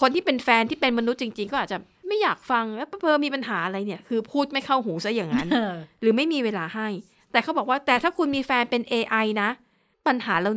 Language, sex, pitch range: Thai, female, 210-260 Hz